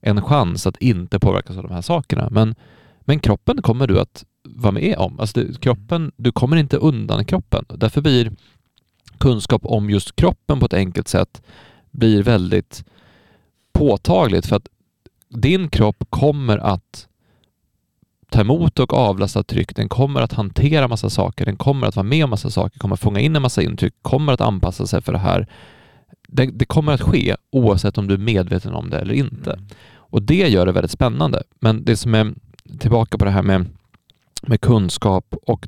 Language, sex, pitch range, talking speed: Swedish, male, 100-130 Hz, 180 wpm